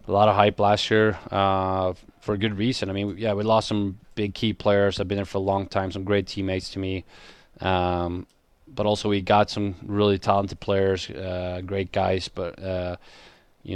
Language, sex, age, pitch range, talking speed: English, male, 20-39, 95-100 Hz, 205 wpm